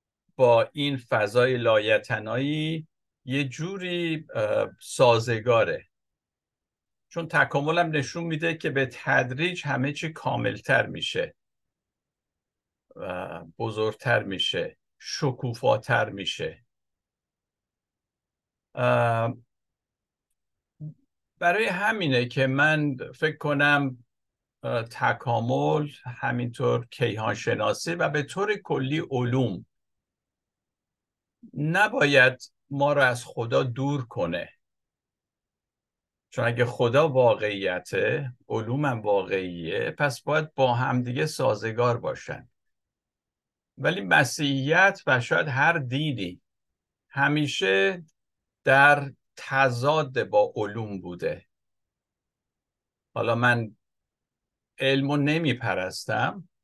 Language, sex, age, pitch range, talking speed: Persian, male, 60-79, 120-155 Hz, 75 wpm